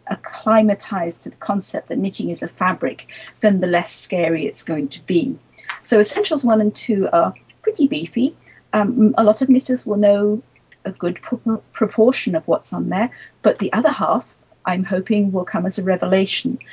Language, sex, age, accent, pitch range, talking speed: English, female, 40-59, British, 175-225 Hz, 180 wpm